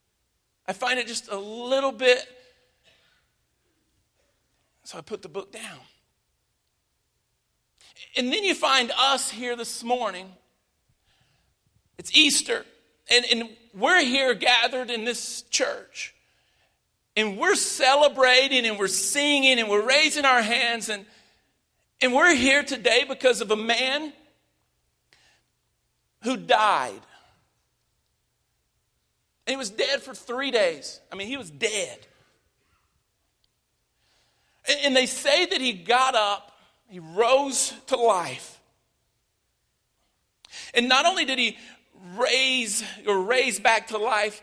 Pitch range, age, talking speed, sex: 225-275 Hz, 50-69, 115 wpm, male